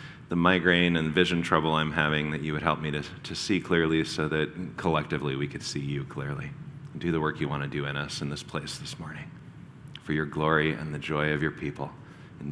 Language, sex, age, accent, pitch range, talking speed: English, male, 30-49, American, 80-120 Hz, 240 wpm